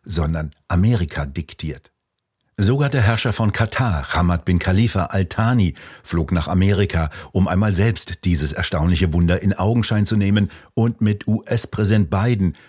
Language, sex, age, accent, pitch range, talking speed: German, male, 60-79, German, 85-110 Hz, 140 wpm